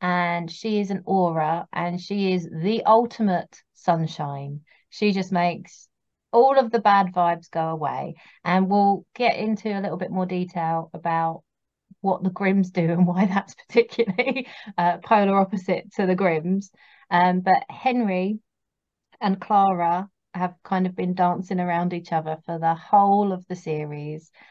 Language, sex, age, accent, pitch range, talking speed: English, female, 30-49, British, 170-215 Hz, 155 wpm